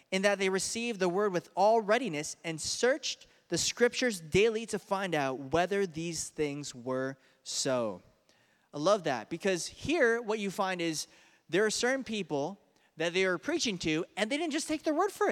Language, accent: English, American